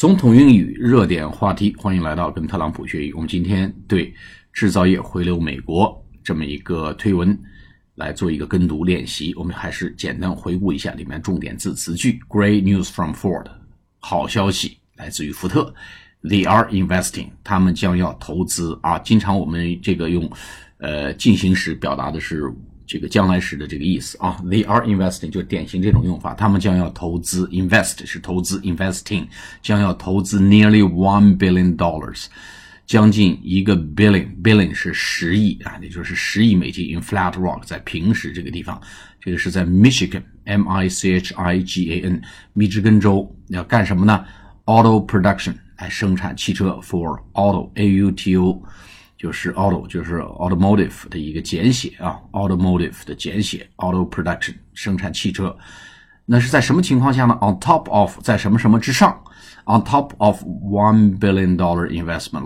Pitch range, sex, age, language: 90-105 Hz, male, 50-69, Chinese